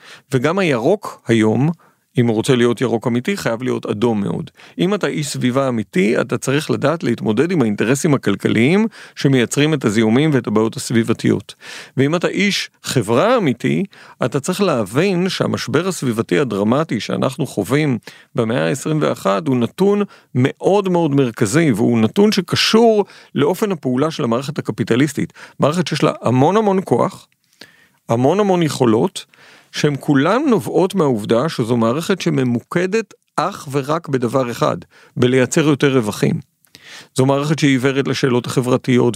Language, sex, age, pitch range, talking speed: Hebrew, male, 50-69, 120-160 Hz, 135 wpm